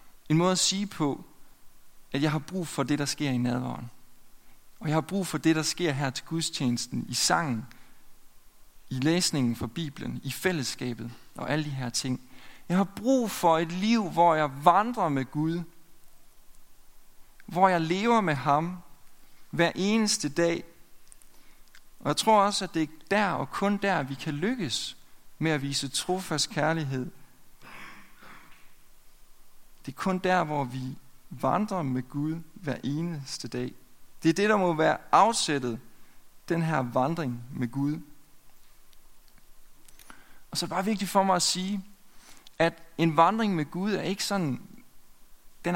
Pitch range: 135-185 Hz